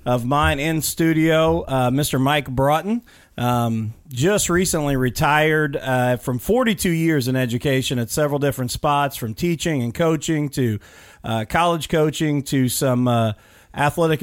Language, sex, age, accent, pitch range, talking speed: English, male, 40-59, American, 125-160 Hz, 145 wpm